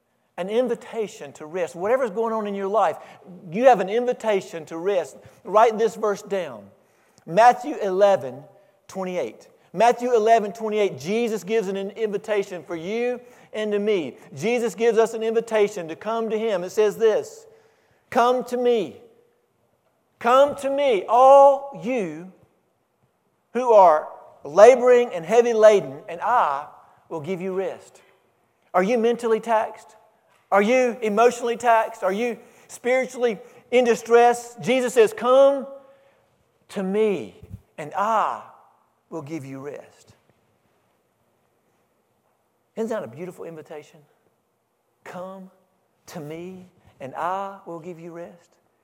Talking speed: 135 wpm